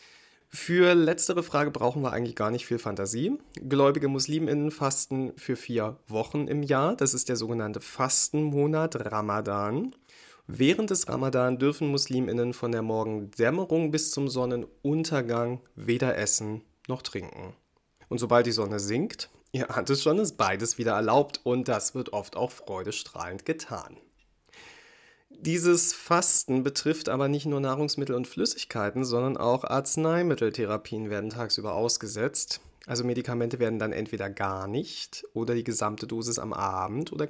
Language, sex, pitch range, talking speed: German, male, 115-145 Hz, 140 wpm